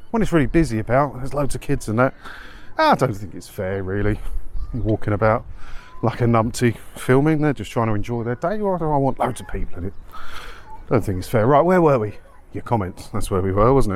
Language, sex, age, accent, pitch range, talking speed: English, male, 30-49, British, 105-155 Hz, 235 wpm